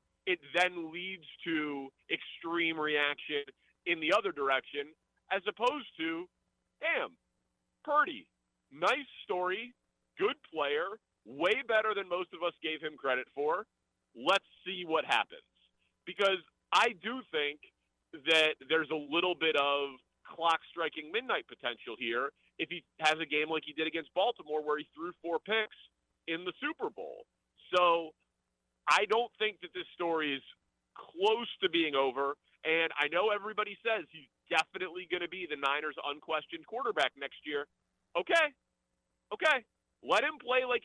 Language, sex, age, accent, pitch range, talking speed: English, male, 40-59, American, 155-225 Hz, 150 wpm